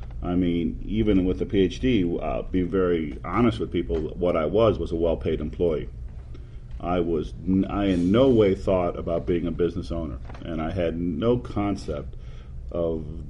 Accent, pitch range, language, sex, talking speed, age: American, 80-105 Hz, English, male, 165 wpm, 40-59